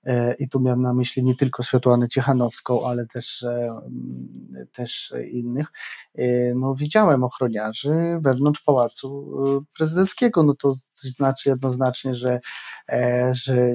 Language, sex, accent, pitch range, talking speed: Polish, male, native, 120-135 Hz, 110 wpm